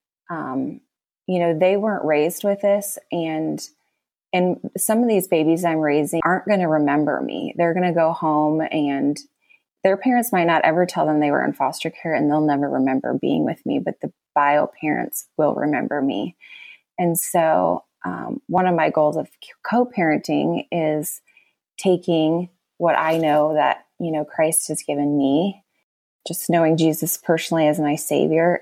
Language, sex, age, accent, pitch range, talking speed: English, female, 20-39, American, 155-180 Hz, 170 wpm